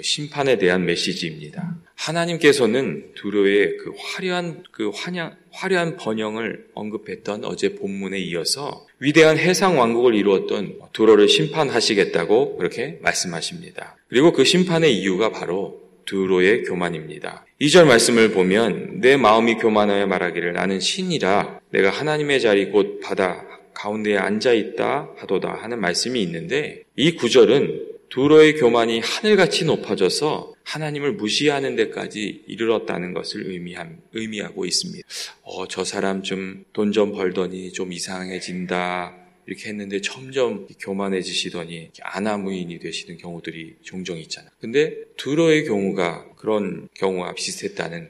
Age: 30-49